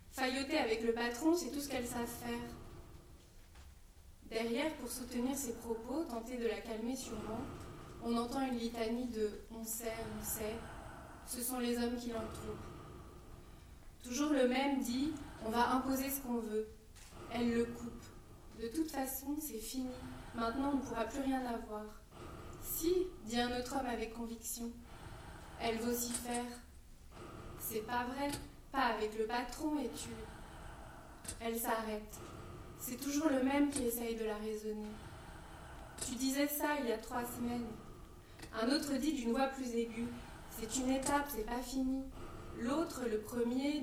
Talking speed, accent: 155 wpm, French